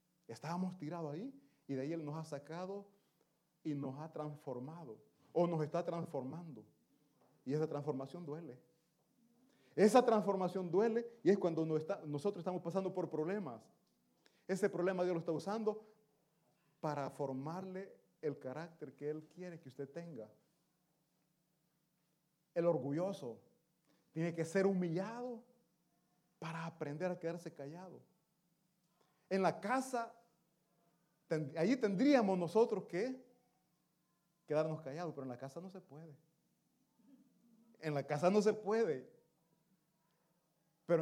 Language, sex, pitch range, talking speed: Italian, male, 155-200 Hz, 125 wpm